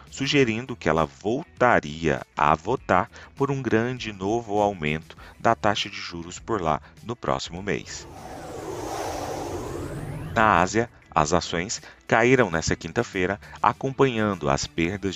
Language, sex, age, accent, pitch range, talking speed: Portuguese, male, 40-59, Brazilian, 80-110 Hz, 120 wpm